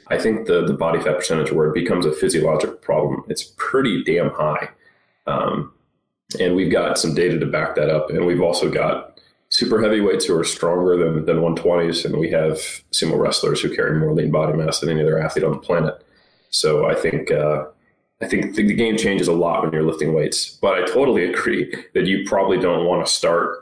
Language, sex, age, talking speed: English, male, 30-49, 215 wpm